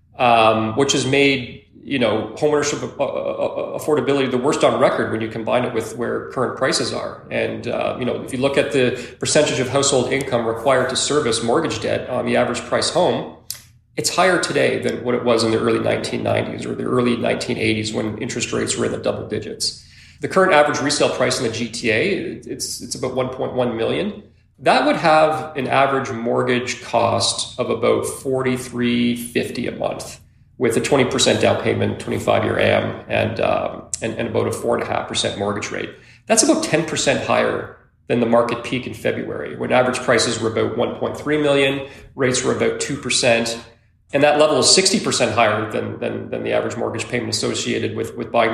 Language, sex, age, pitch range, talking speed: English, male, 40-59, 115-140 Hz, 180 wpm